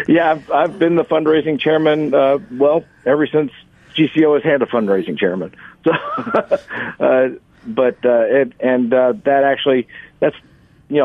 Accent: American